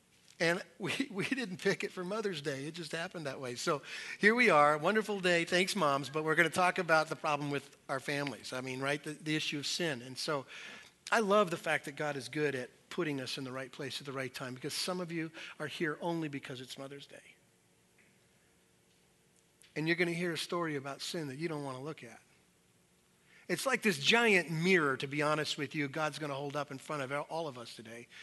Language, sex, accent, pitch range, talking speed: English, male, American, 140-190 Hz, 235 wpm